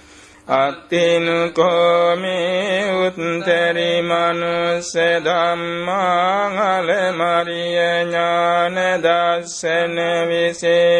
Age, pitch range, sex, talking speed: 60-79, 170-185 Hz, male, 55 wpm